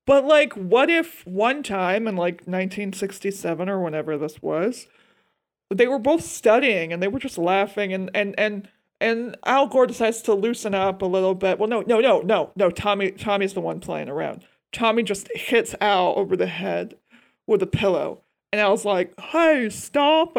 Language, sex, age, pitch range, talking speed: English, male, 40-59, 180-230 Hz, 190 wpm